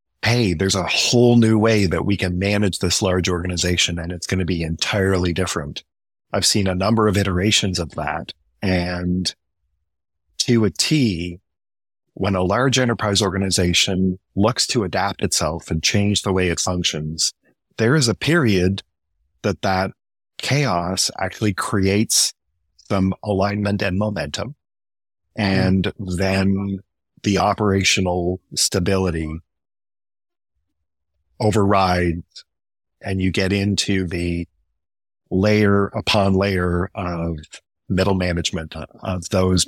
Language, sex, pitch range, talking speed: English, male, 85-100 Hz, 120 wpm